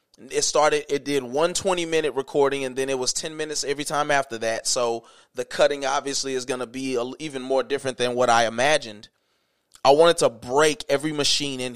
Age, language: 20-39, English